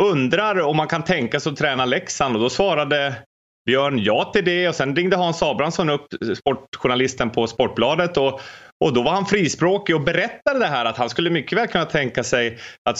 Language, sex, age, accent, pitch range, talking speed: English, male, 30-49, Swedish, 130-180 Hz, 205 wpm